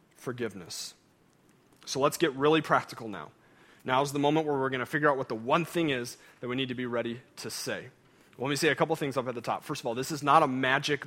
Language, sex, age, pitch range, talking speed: English, male, 30-49, 125-160 Hz, 260 wpm